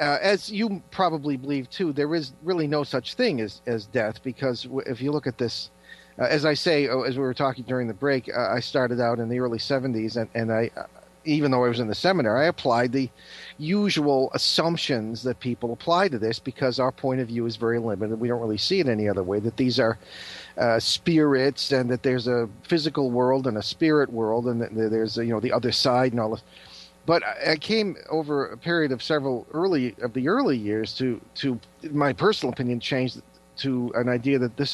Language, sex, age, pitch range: English, male, 50-69, 115-145 Hz